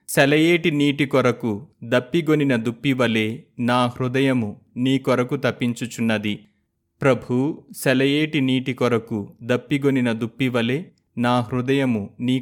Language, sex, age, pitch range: Telugu, male, 30-49, 115-140 Hz